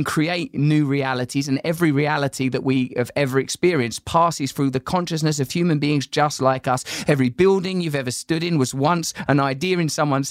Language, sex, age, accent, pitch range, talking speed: English, male, 20-39, British, 125-165 Hz, 190 wpm